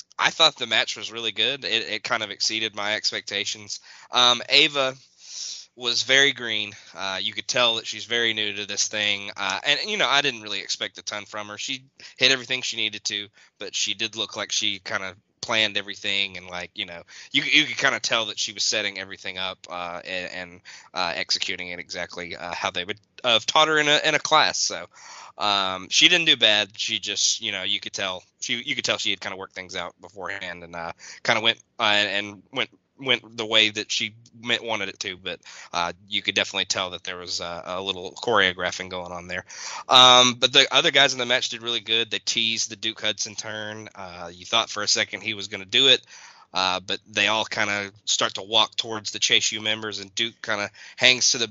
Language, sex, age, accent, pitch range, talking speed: English, male, 10-29, American, 95-115 Hz, 235 wpm